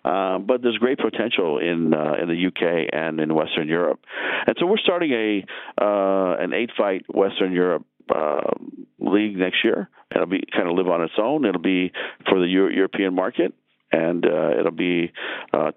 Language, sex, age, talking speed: English, male, 50-69, 185 wpm